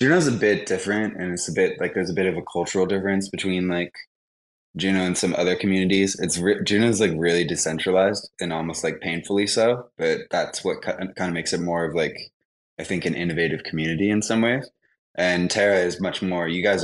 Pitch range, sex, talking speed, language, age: 80-95 Hz, male, 210 wpm, English, 20-39